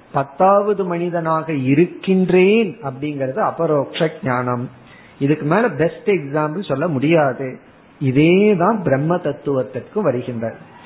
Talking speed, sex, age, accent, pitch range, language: 90 wpm, male, 50-69, native, 145-200 Hz, Tamil